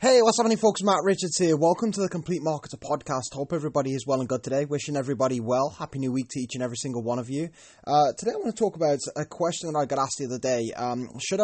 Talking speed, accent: 275 wpm, British